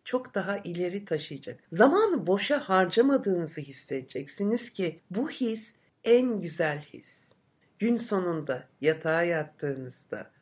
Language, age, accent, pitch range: Turkish, 60-79, native, 160-235 Hz